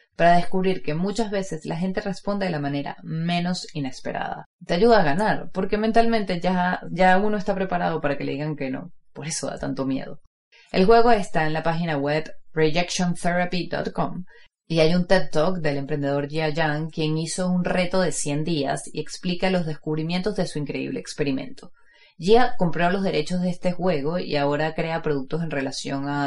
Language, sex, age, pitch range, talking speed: Spanish, female, 30-49, 145-185 Hz, 185 wpm